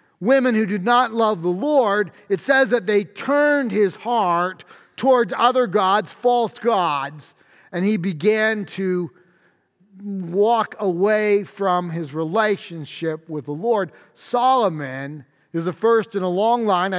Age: 40-59